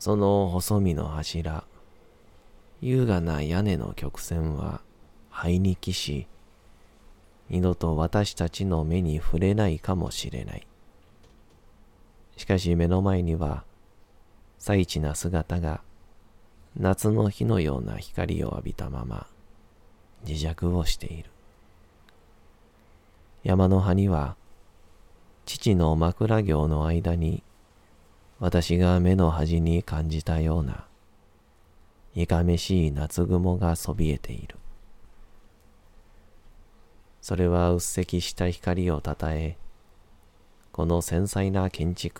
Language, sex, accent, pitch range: Japanese, male, native, 75-95 Hz